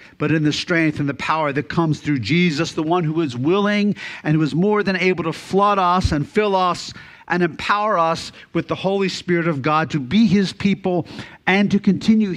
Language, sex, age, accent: English, male, 50-69, American